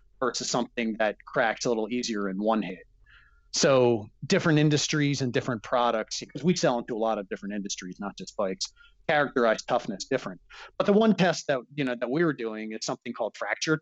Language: English